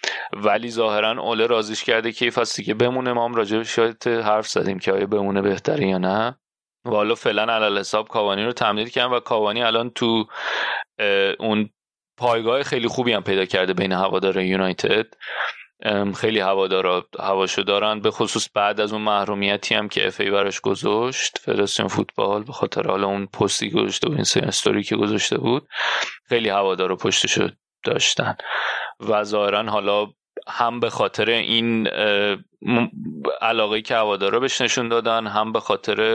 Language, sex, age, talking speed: Persian, male, 30-49, 155 wpm